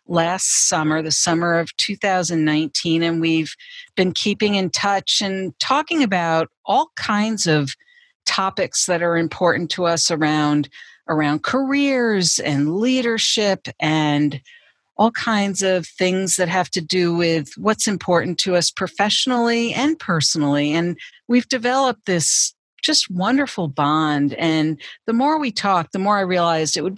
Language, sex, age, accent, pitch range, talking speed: English, female, 50-69, American, 155-220 Hz, 140 wpm